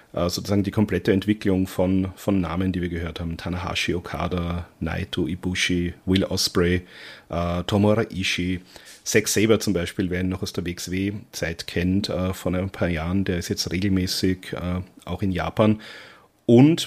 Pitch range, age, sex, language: 90-105 Hz, 40-59, male, German